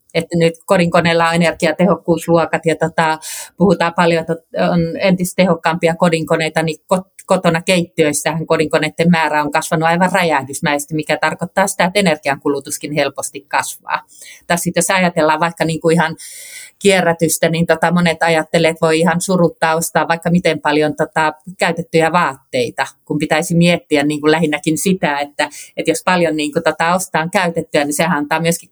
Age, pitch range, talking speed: 30-49, 155-175 Hz, 150 wpm